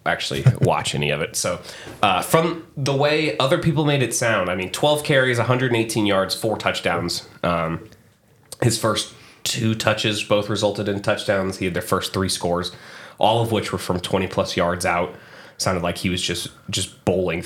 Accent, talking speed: American, 185 wpm